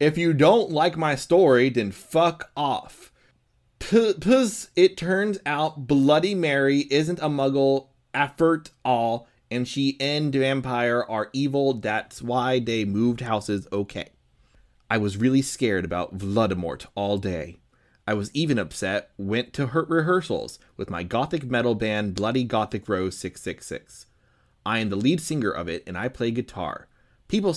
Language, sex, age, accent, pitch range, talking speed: English, male, 20-39, American, 105-145 Hz, 150 wpm